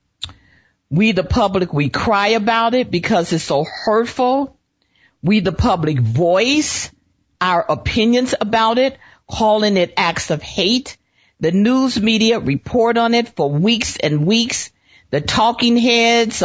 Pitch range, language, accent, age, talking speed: 150-230 Hz, English, American, 50-69, 135 wpm